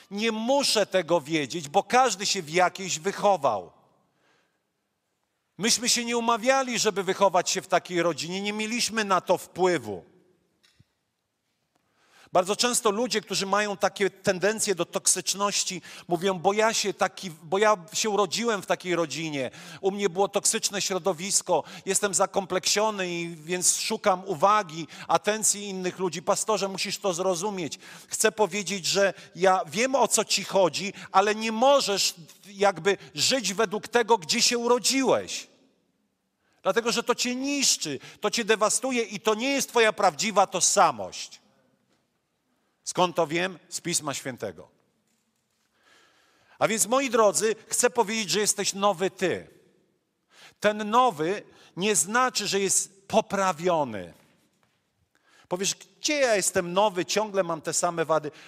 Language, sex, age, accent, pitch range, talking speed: Polish, male, 40-59, native, 180-215 Hz, 135 wpm